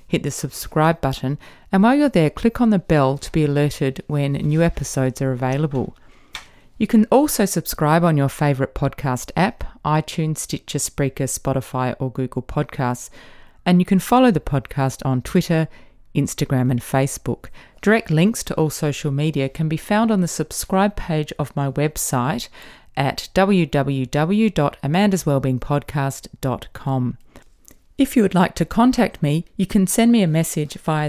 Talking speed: 150 wpm